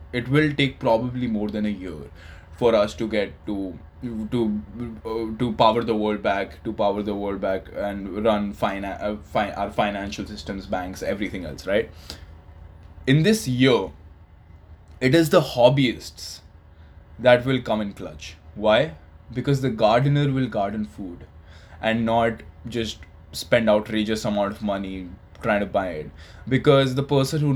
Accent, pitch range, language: Indian, 95-125 Hz, English